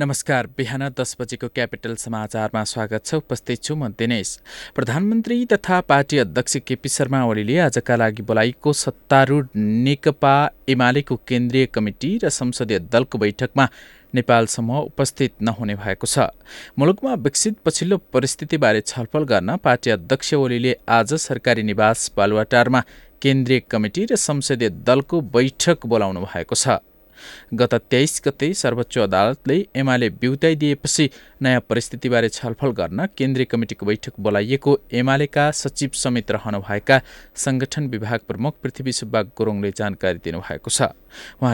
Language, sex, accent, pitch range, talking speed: English, male, Indian, 115-140 Hz, 120 wpm